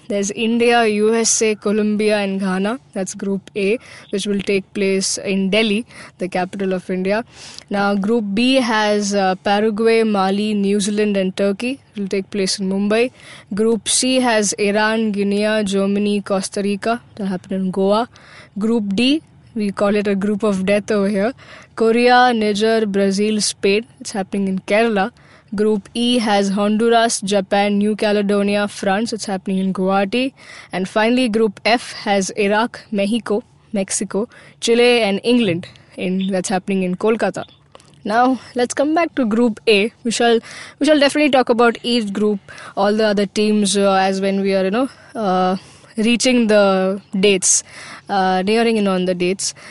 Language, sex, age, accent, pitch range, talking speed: English, female, 20-39, Indian, 195-230 Hz, 160 wpm